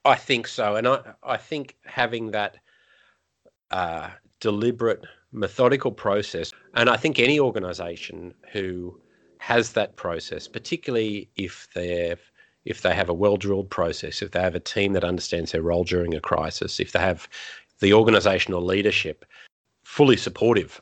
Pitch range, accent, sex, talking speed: 90-115 Hz, Australian, male, 145 wpm